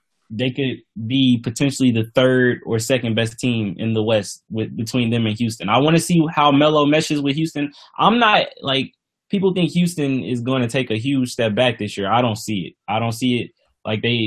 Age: 10-29